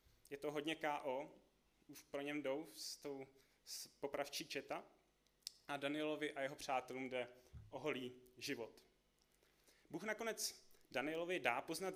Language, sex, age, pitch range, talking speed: Czech, male, 20-39, 130-160 Hz, 130 wpm